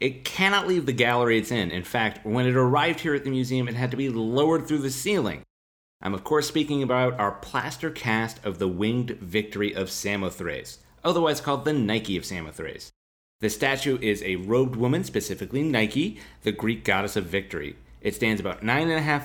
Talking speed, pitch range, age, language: 200 wpm, 95-130 Hz, 30-49, English